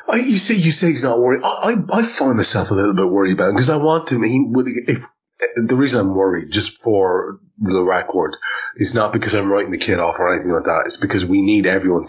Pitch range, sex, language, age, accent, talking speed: 100-150 Hz, male, English, 30-49, Irish, 245 wpm